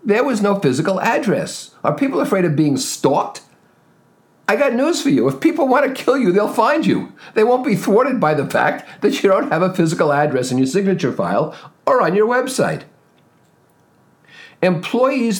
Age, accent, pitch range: 50-69, American, 140-195 Hz